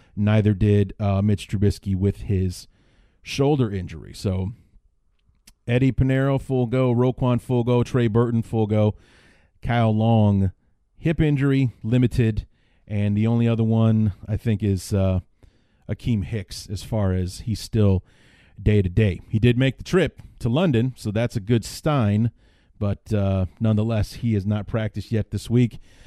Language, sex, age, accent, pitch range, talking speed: English, male, 30-49, American, 100-120 Hz, 155 wpm